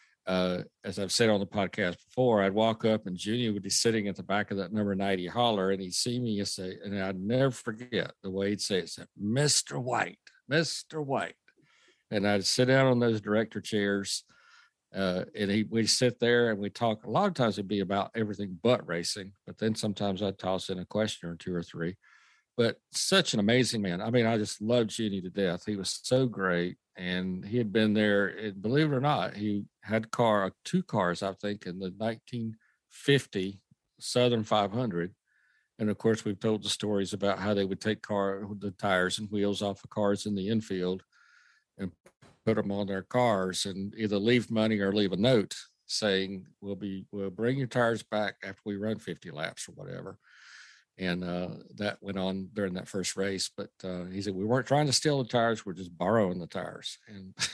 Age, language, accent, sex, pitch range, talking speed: 50-69, English, American, male, 95-115 Hz, 210 wpm